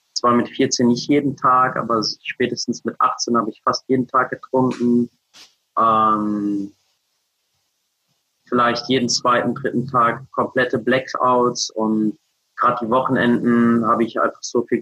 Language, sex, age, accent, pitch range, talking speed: German, male, 30-49, German, 115-130 Hz, 135 wpm